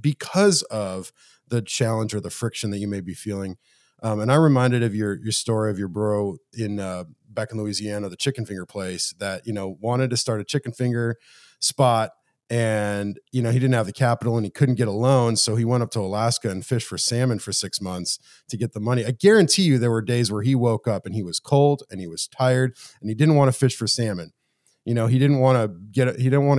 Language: English